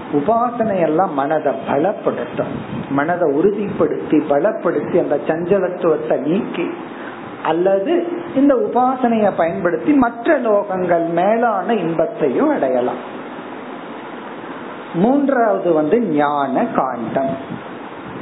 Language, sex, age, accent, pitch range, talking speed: Tamil, male, 50-69, native, 160-235 Hz, 45 wpm